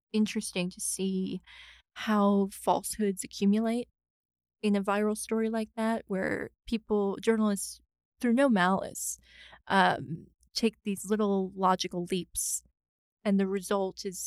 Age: 20-39